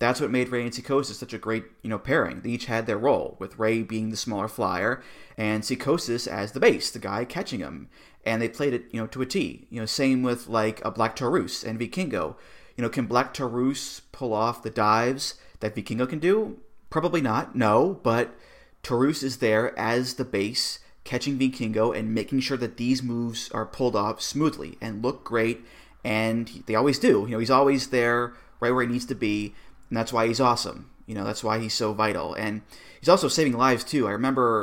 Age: 30-49